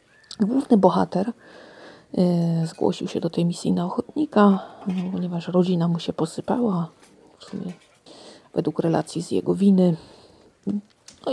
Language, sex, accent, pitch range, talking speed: Polish, female, native, 170-200 Hz, 115 wpm